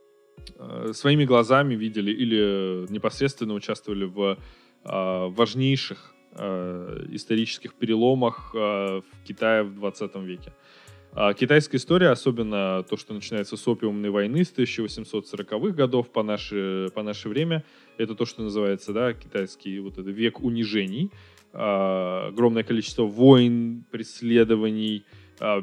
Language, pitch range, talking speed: Russian, 100-120 Hz, 120 wpm